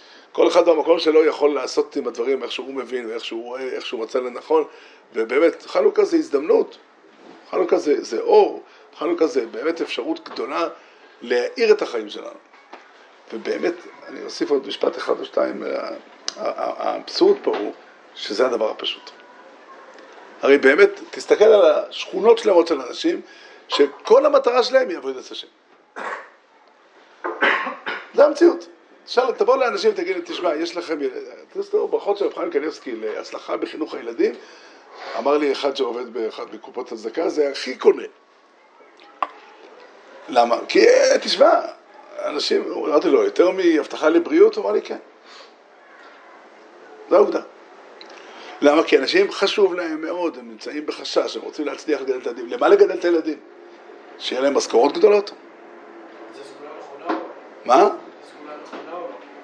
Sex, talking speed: male, 130 wpm